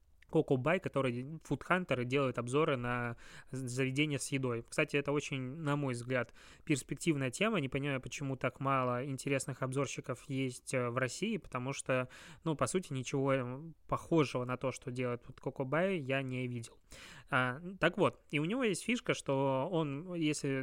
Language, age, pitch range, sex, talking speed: Russian, 20-39, 130-150 Hz, male, 155 wpm